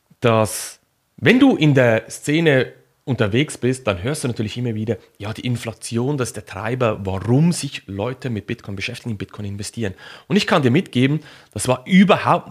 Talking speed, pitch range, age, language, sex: 180 wpm, 110-145 Hz, 30-49, German, male